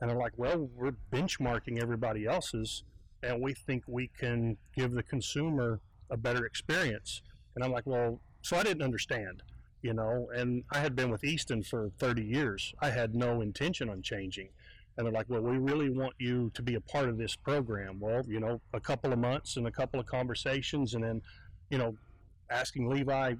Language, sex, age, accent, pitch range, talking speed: English, male, 40-59, American, 110-130 Hz, 195 wpm